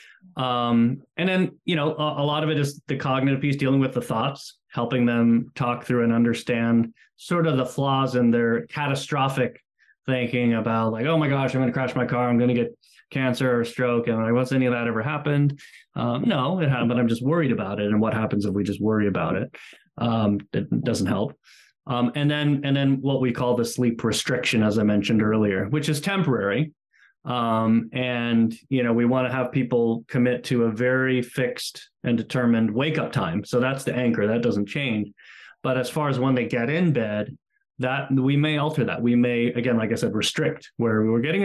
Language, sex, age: English, male, 20-39